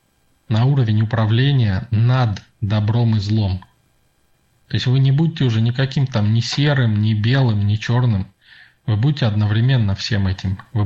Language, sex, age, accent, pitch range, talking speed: Russian, male, 20-39, native, 100-125 Hz, 150 wpm